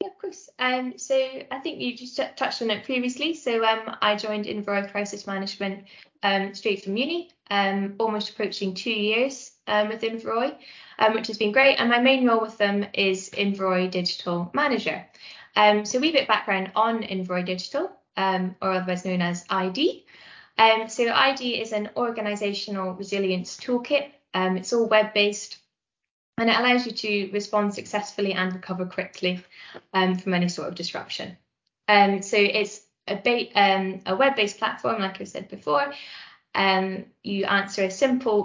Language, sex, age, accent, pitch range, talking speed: English, female, 10-29, British, 190-230 Hz, 165 wpm